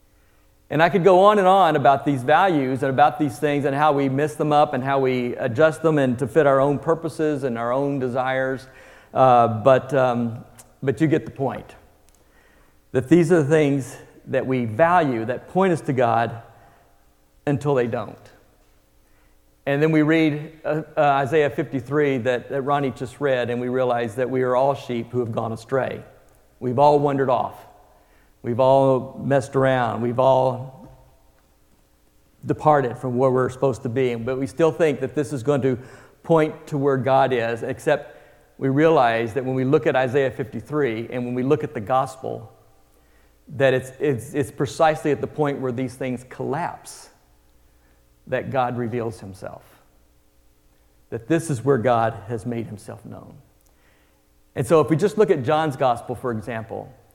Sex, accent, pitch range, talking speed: male, American, 115-145 Hz, 175 wpm